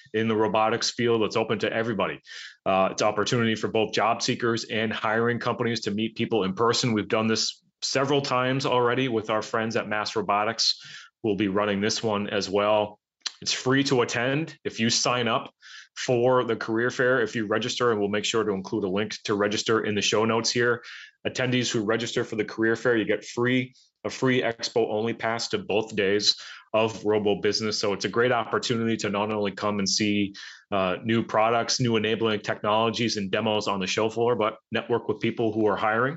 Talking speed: 205 wpm